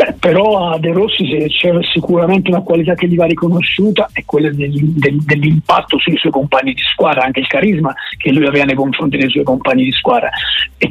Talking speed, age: 205 wpm, 50-69